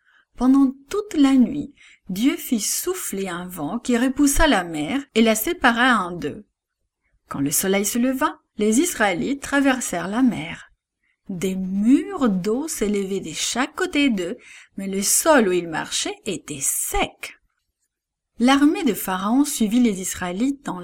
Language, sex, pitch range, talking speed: English, female, 195-275 Hz, 145 wpm